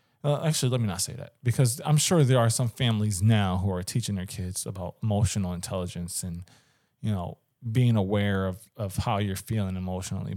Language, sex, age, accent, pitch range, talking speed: English, male, 20-39, American, 105-145 Hz, 195 wpm